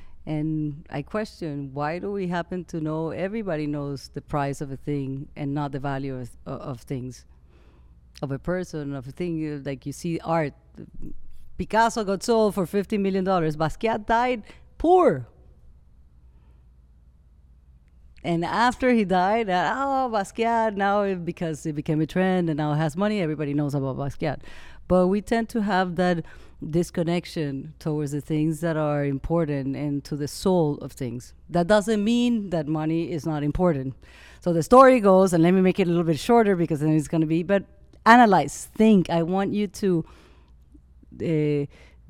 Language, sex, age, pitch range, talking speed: English, female, 40-59, 135-180 Hz, 170 wpm